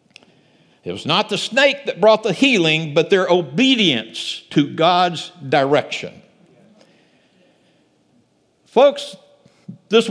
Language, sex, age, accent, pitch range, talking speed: English, male, 60-79, American, 165-245 Hz, 100 wpm